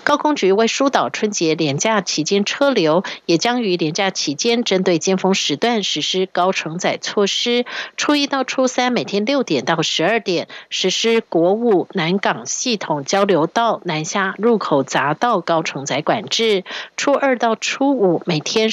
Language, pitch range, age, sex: Chinese, 175-225 Hz, 50-69, female